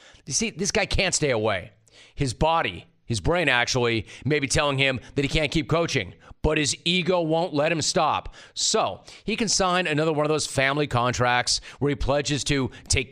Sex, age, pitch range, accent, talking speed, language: male, 30-49, 135-175 Hz, American, 195 wpm, English